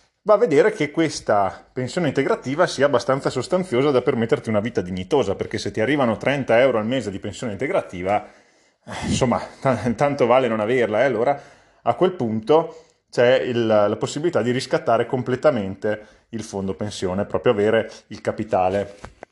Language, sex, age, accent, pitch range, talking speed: Italian, male, 30-49, native, 105-125 Hz, 160 wpm